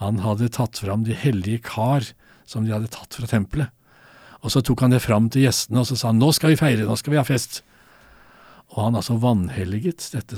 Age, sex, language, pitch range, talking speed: 60-79, male, English, 105-125 Hz, 225 wpm